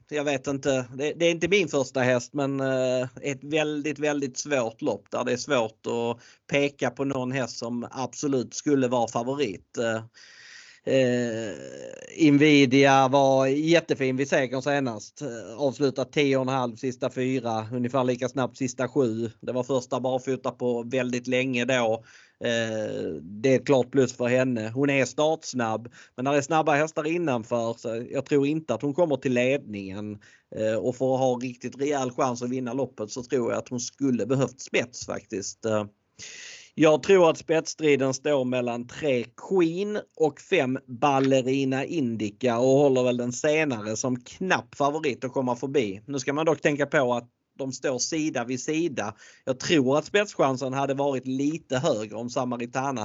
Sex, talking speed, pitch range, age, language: male, 165 wpm, 120-145 Hz, 30-49, Swedish